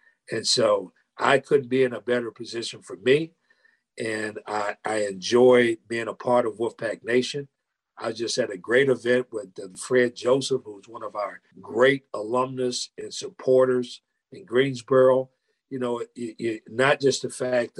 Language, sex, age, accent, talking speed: English, male, 50-69, American, 155 wpm